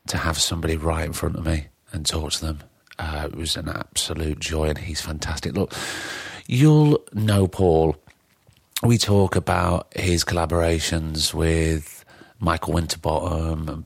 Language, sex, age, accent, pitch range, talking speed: English, male, 40-59, British, 80-95 Hz, 145 wpm